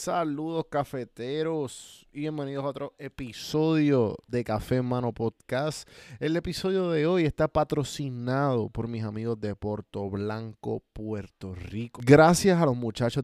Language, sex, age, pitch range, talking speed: Spanish, male, 20-39, 115-145 Hz, 135 wpm